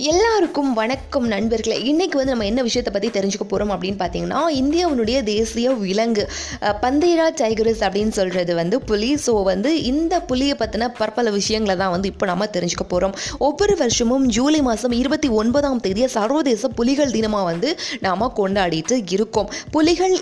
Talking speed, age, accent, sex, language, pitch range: 150 wpm, 20-39, native, female, Tamil, 205-275 Hz